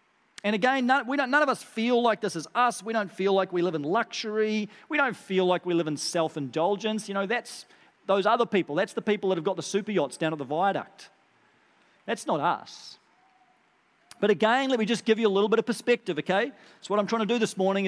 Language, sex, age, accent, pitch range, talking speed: English, male, 40-59, Australian, 160-215 Hz, 230 wpm